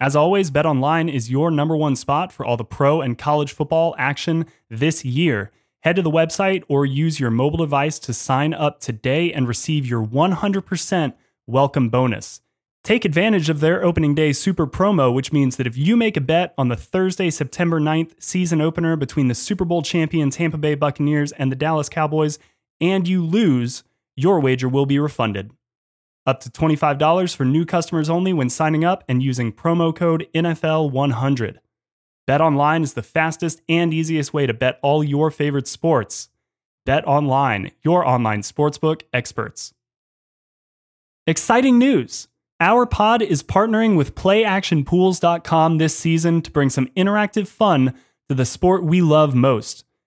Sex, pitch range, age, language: male, 135-170 Hz, 20-39, English